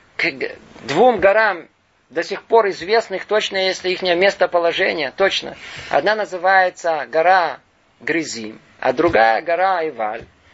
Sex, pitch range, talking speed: male, 125-200 Hz, 120 wpm